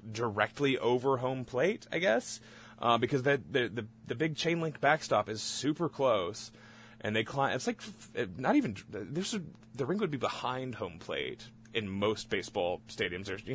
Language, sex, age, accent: English, male, 20-39, American